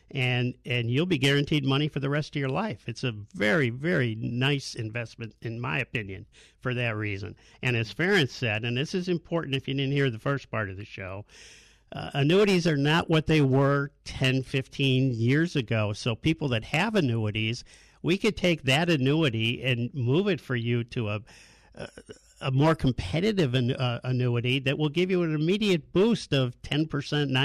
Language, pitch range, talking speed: English, 120-150 Hz, 185 wpm